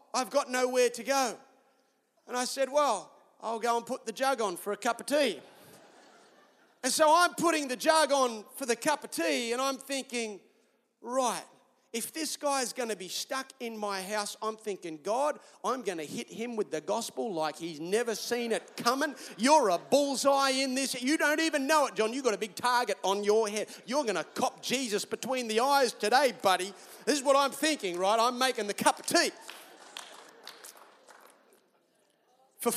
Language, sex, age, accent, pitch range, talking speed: English, male, 30-49, Australian, 230-285 Hz, 195 wpm